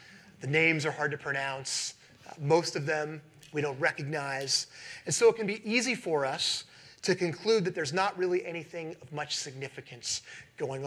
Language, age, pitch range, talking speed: English, 30-49, 135-170 Hz, 175 wpm